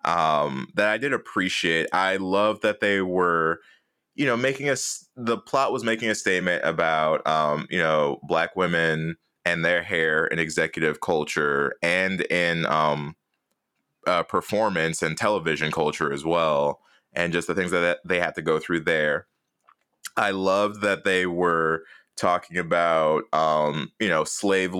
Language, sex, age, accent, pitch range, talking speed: English, male, 20-39, American, 80-105 Hz, 155 wpm